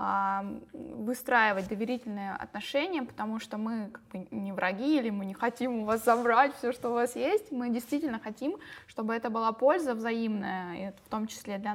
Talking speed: 180 wpm